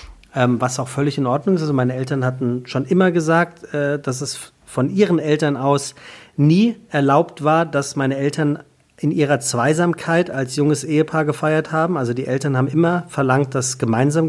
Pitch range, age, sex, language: 130-155 Hz, 40-59, male, German